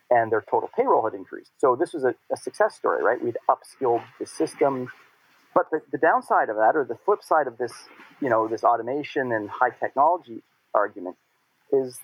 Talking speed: 195 wpm